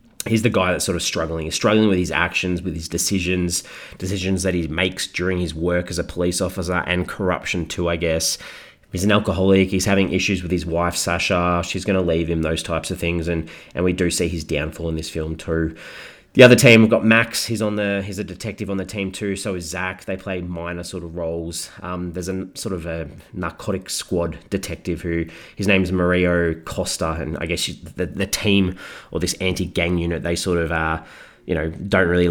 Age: 30-49